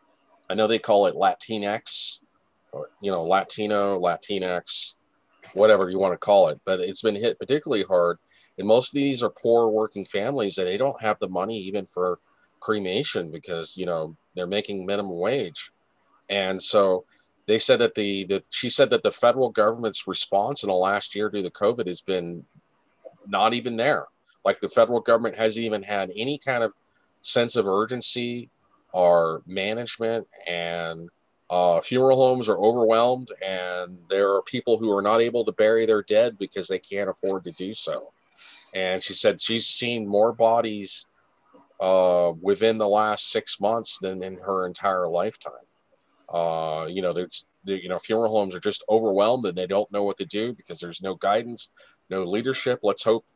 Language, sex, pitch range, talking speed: English, male, 95-115 Hz, 180 wpm